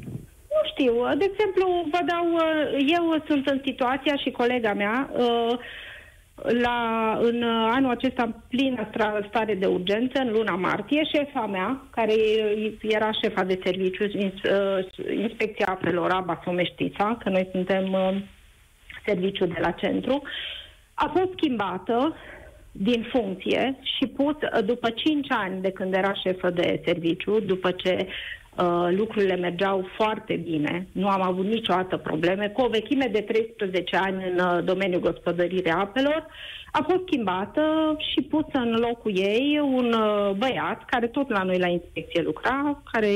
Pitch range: 185-260 Hz